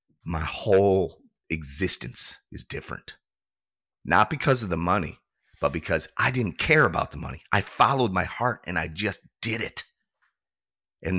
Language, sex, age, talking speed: English, male, 30-49, 150 wpm